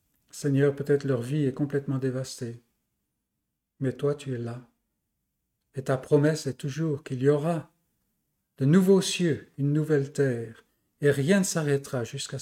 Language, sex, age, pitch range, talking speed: French, male, 40-59, 125-145 Hz, 150 wpm